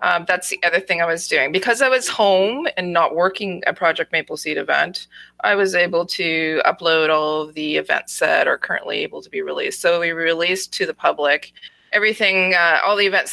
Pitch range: 160-220 Hz